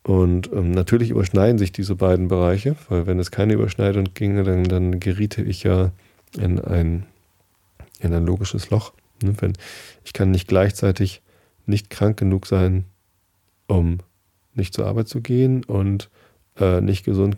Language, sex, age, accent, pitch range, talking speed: German, male, 30-49, German, 90-105 Hz, 145 wpm